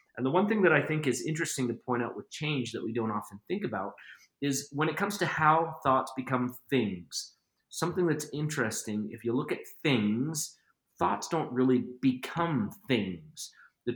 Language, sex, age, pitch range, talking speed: Dutch, male, 30-49, 115-140 Hz, 185 wpm